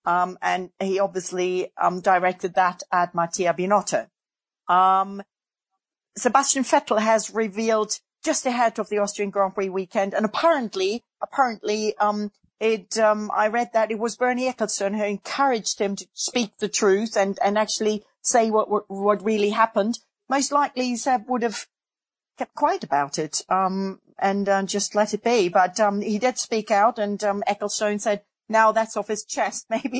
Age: 40-59